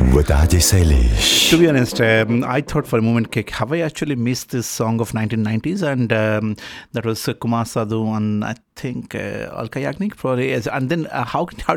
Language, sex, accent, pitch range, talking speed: Hindi, male, native, 110-140 Hz, 210 wpm